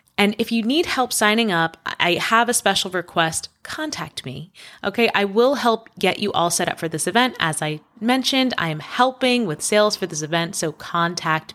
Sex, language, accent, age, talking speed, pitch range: female, English, American, 20-39, 205 wpm, 165-230 Hz